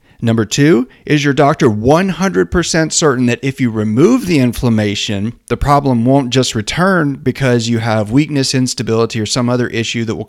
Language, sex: English, male